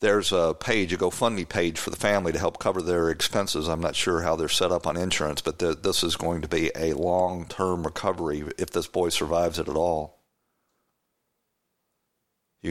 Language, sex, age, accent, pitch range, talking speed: English, male, 50-69, American, 75-90 Hz, 190 wpm